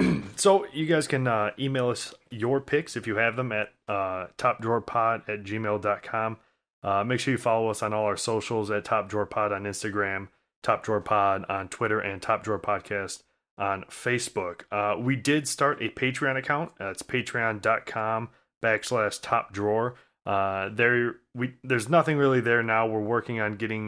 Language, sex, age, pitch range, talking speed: English, male, 30-49, 100-115 Hz, 160 wpm